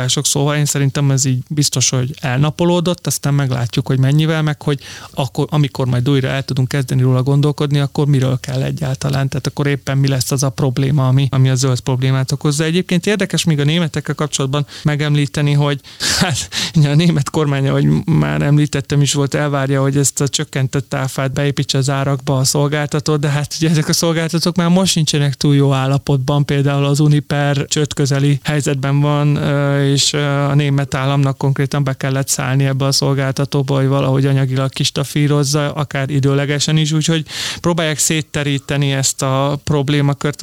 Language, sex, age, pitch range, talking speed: Hungarian, male, 30-49, 135-150 Hz, 165 wpm